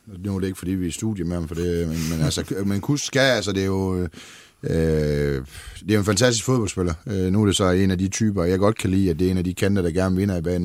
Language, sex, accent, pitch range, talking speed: Danish, male, native, 90-115 Hz, 300 wpm